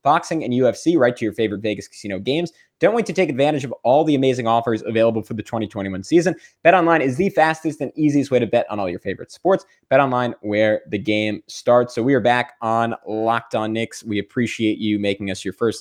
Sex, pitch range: male, 110-140 Hz